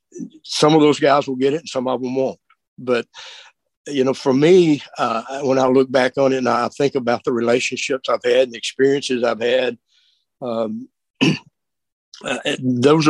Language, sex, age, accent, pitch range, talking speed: English, male, 60-79, American, 115-140 Hz, 180 wpm